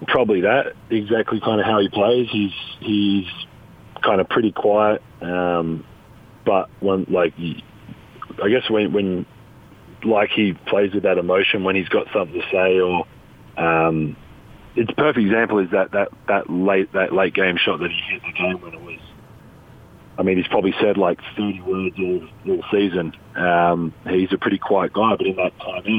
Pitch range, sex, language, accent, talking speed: 90-105 Hz, male, English, Australian, 180 wpm